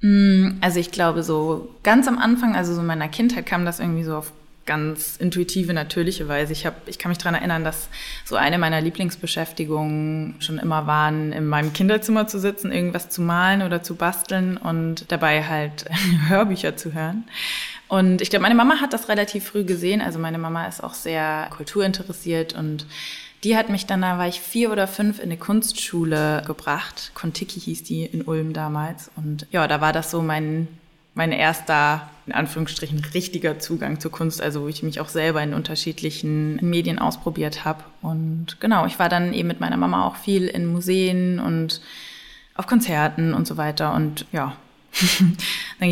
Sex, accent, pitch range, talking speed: female, German, 155-185 Hz, 180 wpm